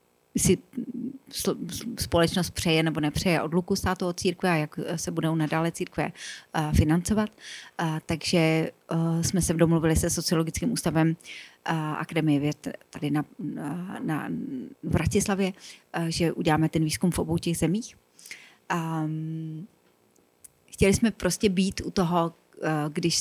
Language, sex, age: Slovak, female, 30-49